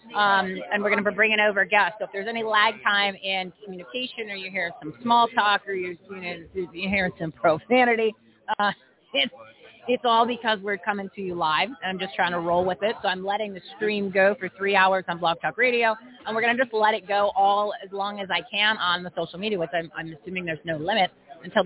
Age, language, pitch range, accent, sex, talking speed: 30-49, English, 180-220 Hz, American, female, 245 wpm